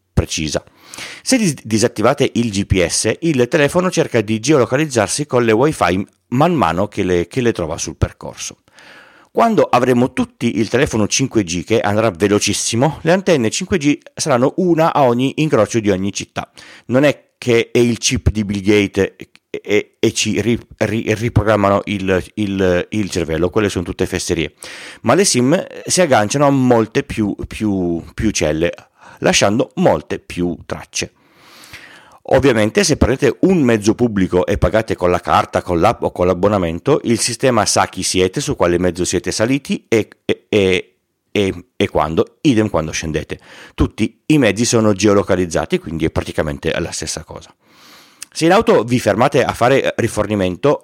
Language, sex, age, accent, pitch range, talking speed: Italian, male, 30-49, native, 95-125 Hz, 150 wpm